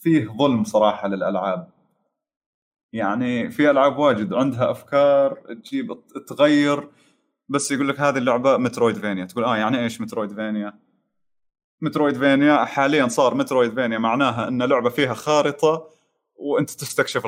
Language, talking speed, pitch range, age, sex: Arabic, 120 wpm, 130-160 Hz, 20-39, male